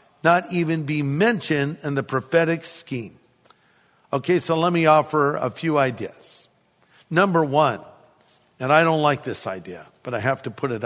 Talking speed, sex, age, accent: 165 wpm, male, 50-69, American